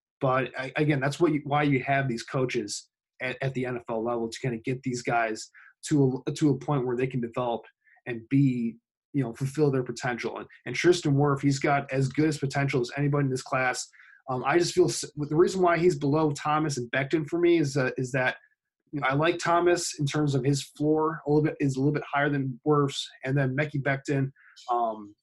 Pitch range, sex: 125-150 Hz, male